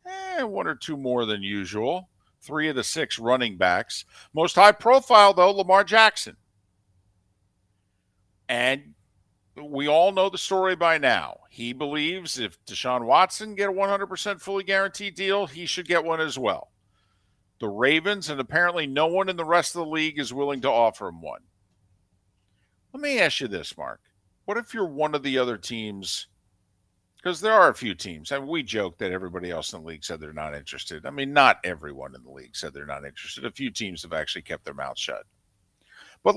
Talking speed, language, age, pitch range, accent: 190 wpm, English, 50-69, 95-160 Hz, American